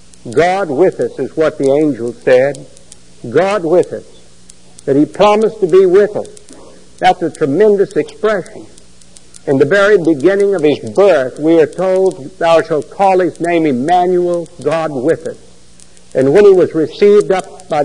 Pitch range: 130-175 Hz